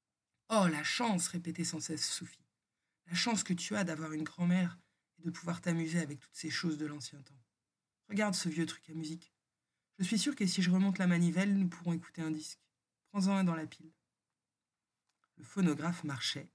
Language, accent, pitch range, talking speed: French, French, 150-185 Hz, 195 wpm